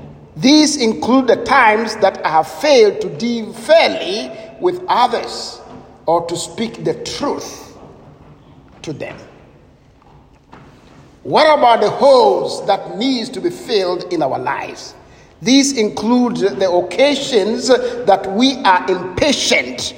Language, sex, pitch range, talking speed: English, male, 165-245 Hz, 120 wpm